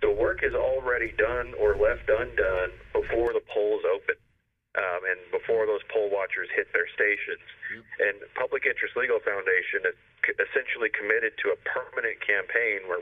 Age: 40-59